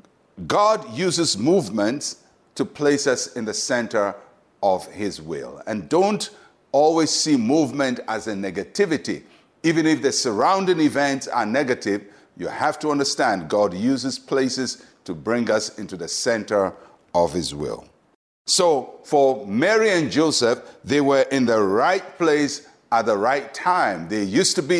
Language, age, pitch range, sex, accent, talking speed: English, 60-79, 135-180 Hz, male, Nigerian, 150 wpm